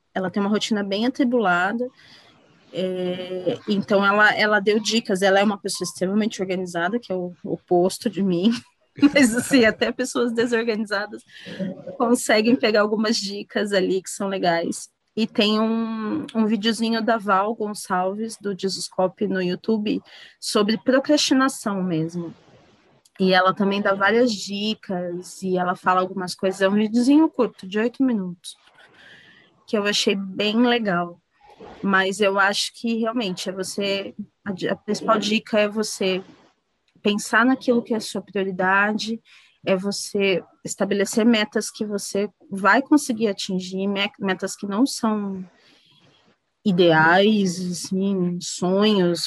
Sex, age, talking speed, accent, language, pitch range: female, 20-39, 130 wpm, Brazilian, Portuguese, 185-225 Hz